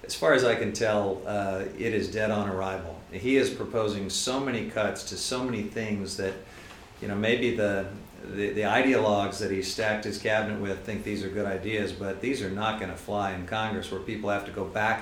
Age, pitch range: 50-69, 105-120 Hz